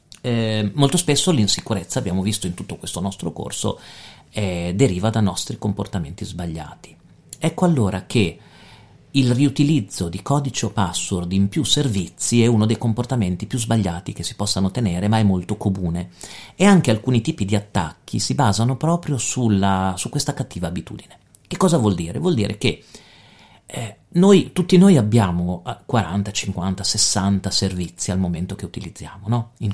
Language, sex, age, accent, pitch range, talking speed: Italian, male, 40-59, native, 95-120 Hz, 155 wpm